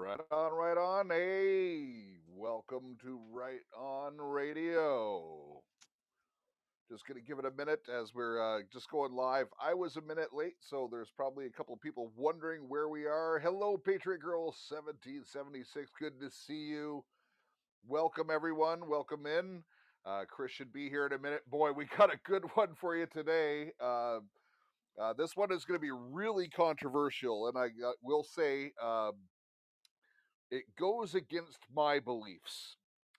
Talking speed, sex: 160 wpm, male